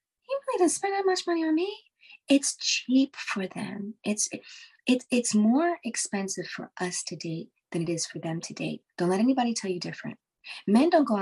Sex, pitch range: female, 170-280 Hz